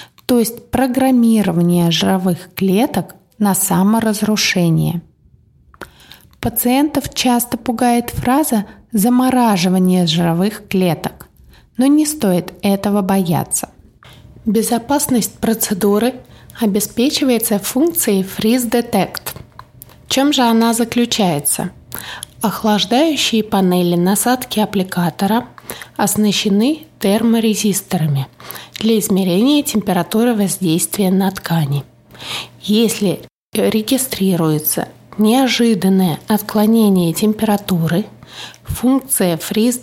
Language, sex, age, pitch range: Russian, female, 20-39, 185-240 Hz